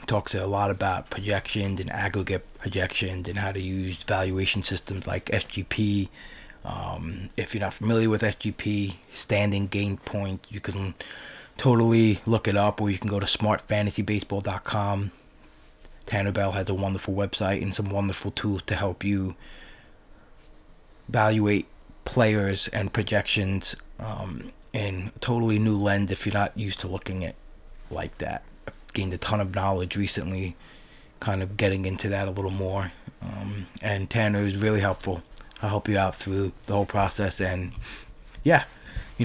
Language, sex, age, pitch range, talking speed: English, male, 20-39, 95-110 Hz, 155 wpm